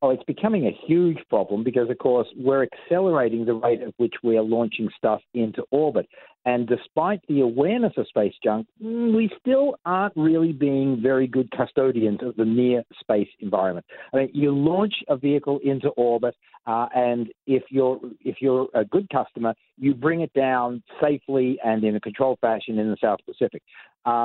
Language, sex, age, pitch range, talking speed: English, male, 50-69, 120-160 Hz, 180 wpm